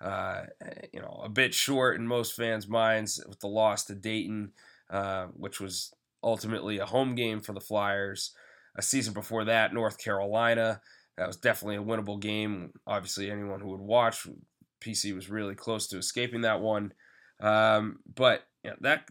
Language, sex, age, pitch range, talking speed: English, male, 20-39, 100-115 Hz, 165 wpm